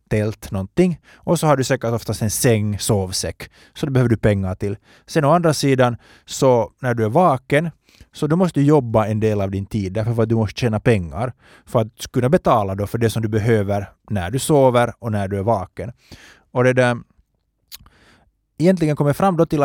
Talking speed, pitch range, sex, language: 210 wpm, 100-135 Hz, male, Finnish